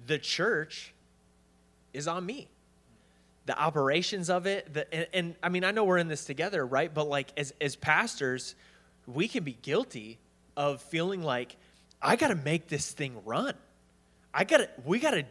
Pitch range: 130-170 Hz